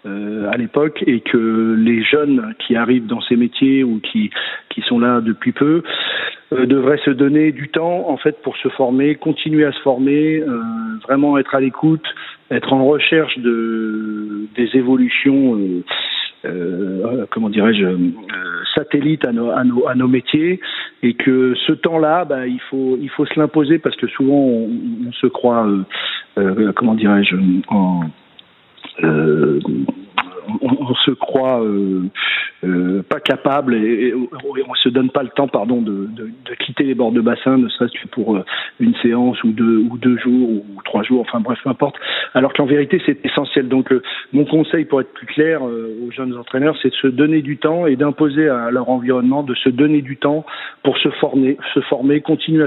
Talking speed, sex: 190 wpm, male